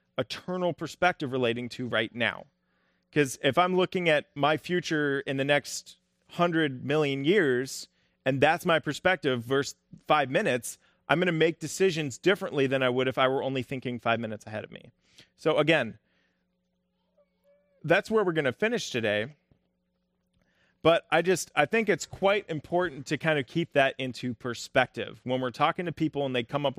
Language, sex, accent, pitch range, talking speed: English, male, American, 125-165 Hz, 175 wpm